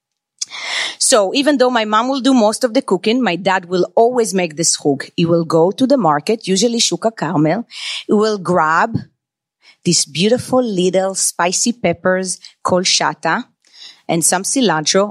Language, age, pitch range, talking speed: English, 30-49, 175-230 Hz, 155 wpm